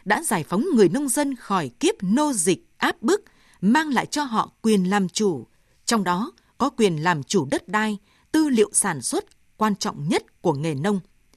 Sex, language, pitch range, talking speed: female, Vietnamese, 185-240 Hz, 195 wpm